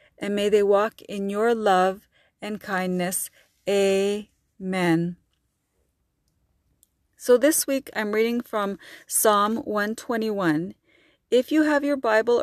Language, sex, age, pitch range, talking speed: English, female, 30-49, 195-235 Hz, 110 wpm